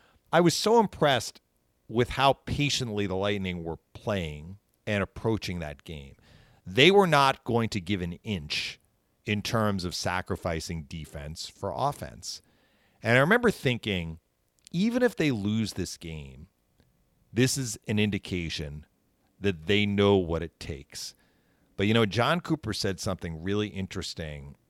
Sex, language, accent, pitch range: male, English, American, 80-105 Hz